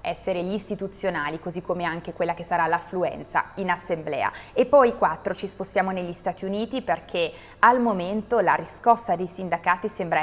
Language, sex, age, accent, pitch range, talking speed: Italian, female, 20-39, native, 175-215 Hz, 165 wpm